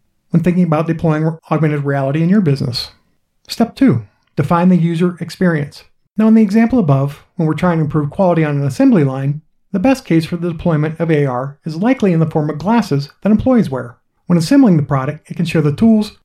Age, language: 50-69, English